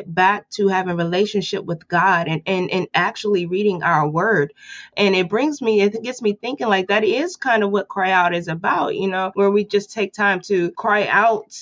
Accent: American